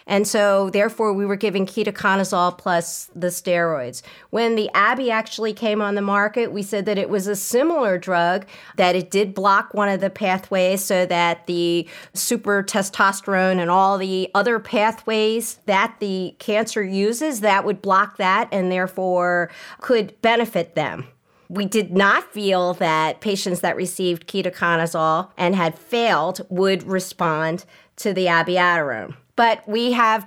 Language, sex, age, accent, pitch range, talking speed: English, female, 40-59, American, 180-215 Hz, 155 wpm